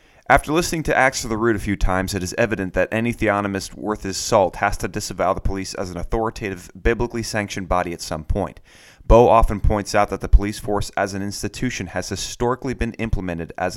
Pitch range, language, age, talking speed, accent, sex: 95-115 Hz, English, 30-49, 215 wpm, American, male